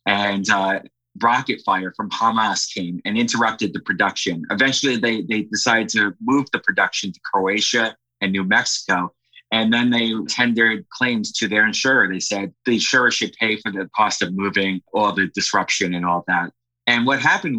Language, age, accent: English, 30-49, American